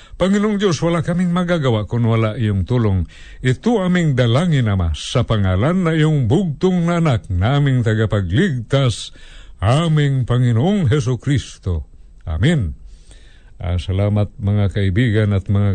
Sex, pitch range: male, 105-150 Hz